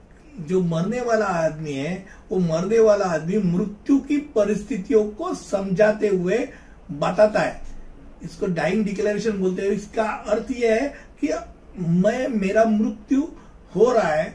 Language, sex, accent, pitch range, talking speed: Hindi, male, native, 190-235 Hz, 140 wpm